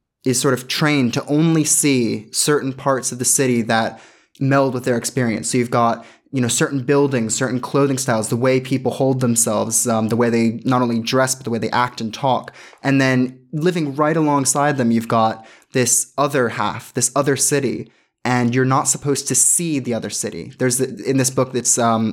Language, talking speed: English, 205 wpm